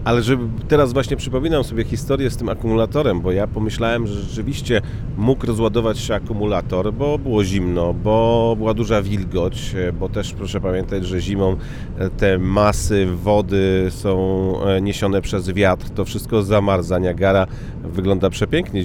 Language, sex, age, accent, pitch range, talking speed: Polish, male, 40-59, native, 95-115 Hz, 145 wpm